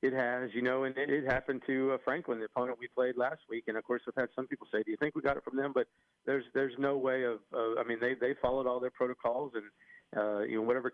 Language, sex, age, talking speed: English, male, 40-59, 290 wpm